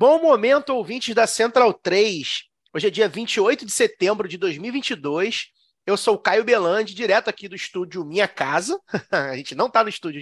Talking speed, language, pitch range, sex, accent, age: 180 wpm, Portuguese, 180-245 Hz, male, Brazilian, 30-49